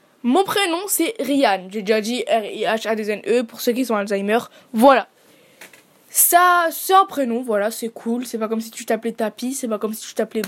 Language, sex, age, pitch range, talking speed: French, female, 20-39, 225-295 Hz, 220 wpm